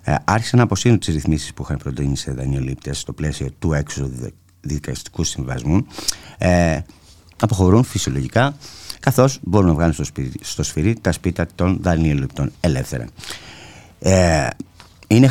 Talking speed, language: 125 wpm, Greek